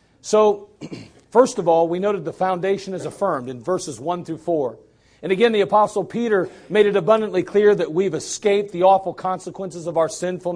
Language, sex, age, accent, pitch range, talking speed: English, male, 40-59, American, 180-220 Hz, 190 wpm